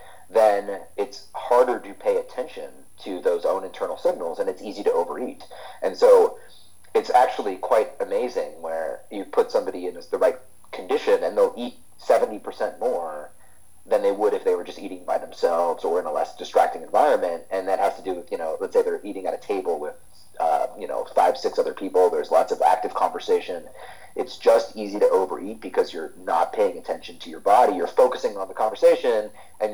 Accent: American